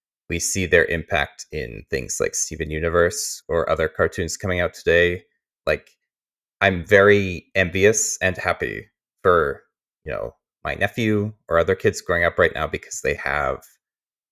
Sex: male